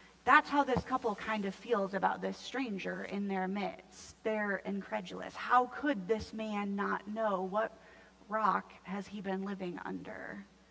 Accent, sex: American, female